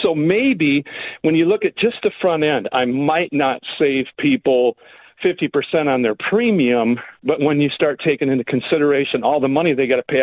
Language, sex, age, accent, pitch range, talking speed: English, male, 50-69, American, 140-190 Hz, 195 wpm